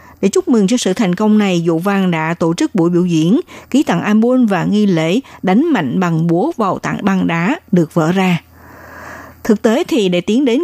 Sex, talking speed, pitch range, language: female, 220 wpm, 180-240 Hz, Vietnamese